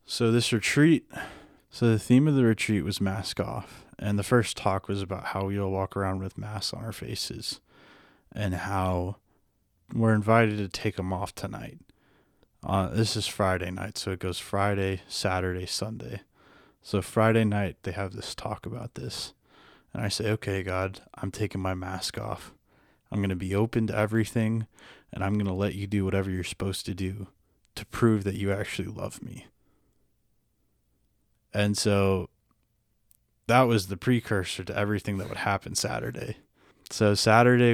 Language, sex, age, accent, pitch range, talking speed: English, male, 20-39, American, 95-110 Hz, 170 wpm